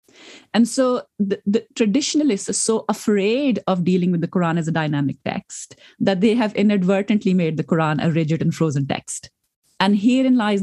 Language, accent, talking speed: English, Indian, 180 wpm